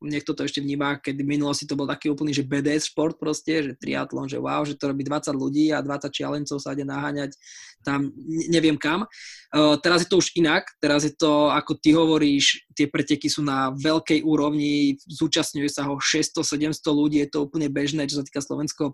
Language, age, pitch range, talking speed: Slovak, 20-39, 145-160 Hz, 200 wpm